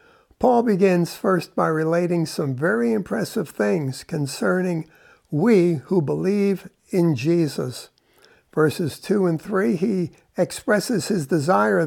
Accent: American